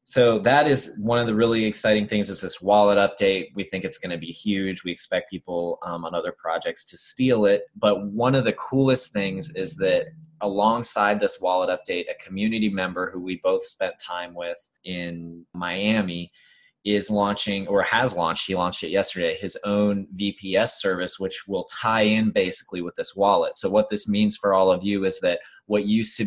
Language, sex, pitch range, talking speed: English, male, 90-105 Hz, 200 wpm